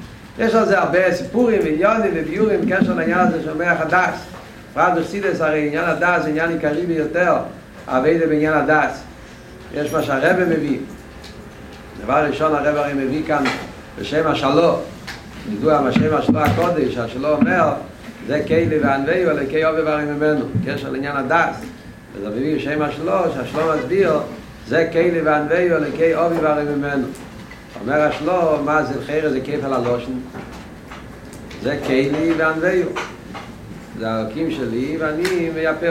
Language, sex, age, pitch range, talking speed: Hebrew, male, 60-79, 140-165 Hz, 140 wpm